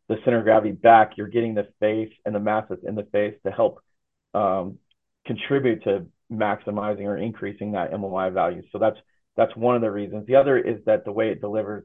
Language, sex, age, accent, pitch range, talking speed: English, male, 40-59, American, 100-115 Hz, 215 wpm